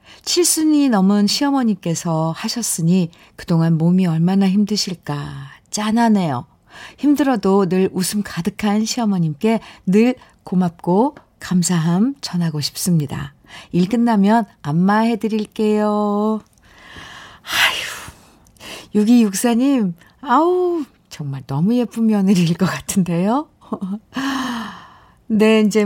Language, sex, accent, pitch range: Korean, female, native, 165-215 Hz